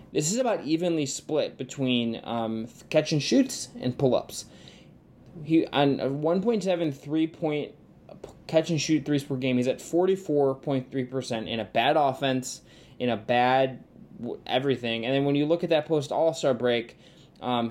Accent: American